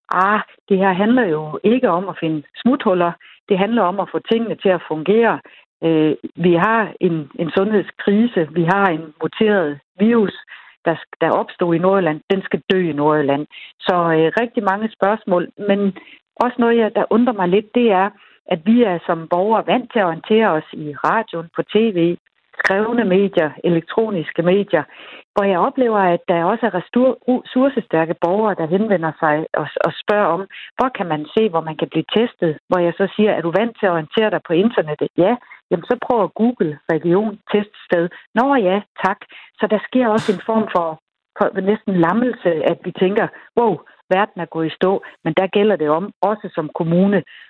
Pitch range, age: 170-215 Hz, 60-79